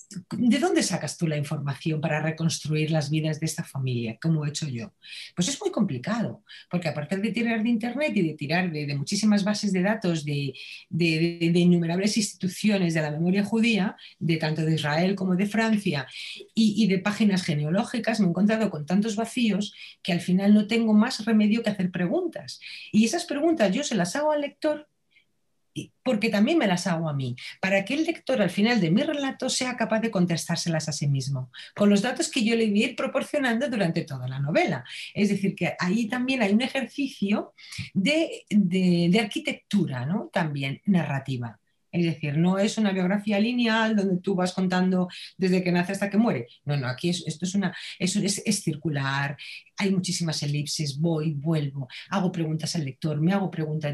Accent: Spanish